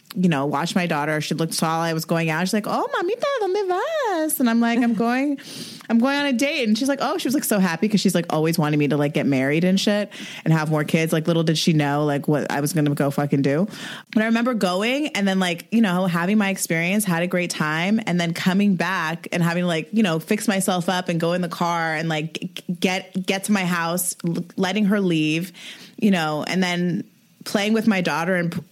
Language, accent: English, American